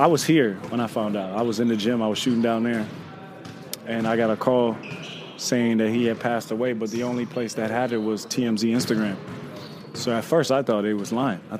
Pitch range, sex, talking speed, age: 110-125 Hz, male, 245 wpm, 20-39